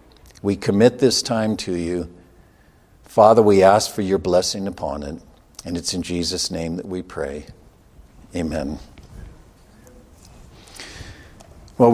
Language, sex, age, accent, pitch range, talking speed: English, male, 50-69, American, 100-125 Hz, 120 wpm